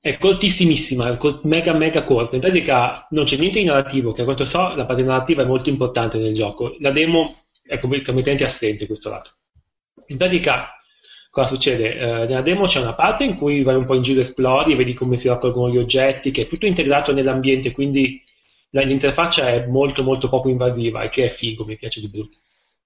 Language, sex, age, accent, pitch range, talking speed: Italian, male, 30-49, native, 125-165 Hz, 205 wpm